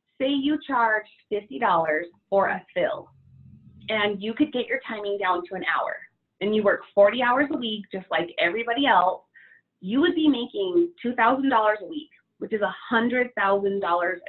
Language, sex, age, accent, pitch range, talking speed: English, female, 30-49, American, 195-275 Hz, 160 wpm